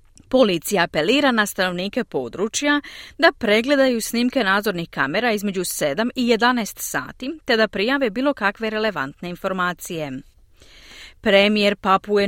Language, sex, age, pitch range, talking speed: Croatian, female, 30-49, 180-255 Hz, 115 wpm